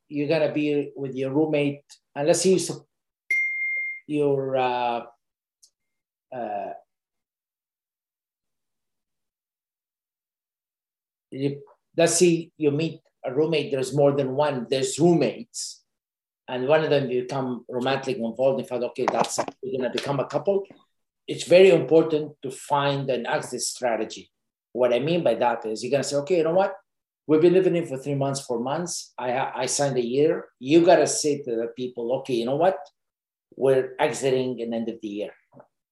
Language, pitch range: English, 125-160 Hz